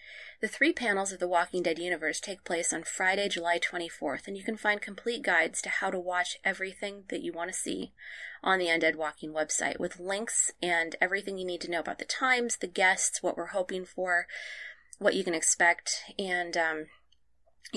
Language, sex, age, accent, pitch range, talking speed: English, female, 20-39, American, 170-205 Hz, 195 wpm